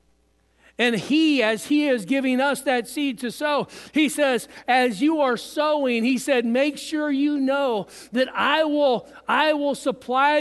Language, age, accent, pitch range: English, 50-69, American, 220-285 Hz